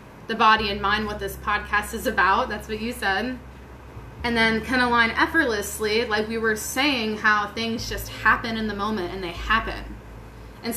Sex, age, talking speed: female, 20-39, 190 wpm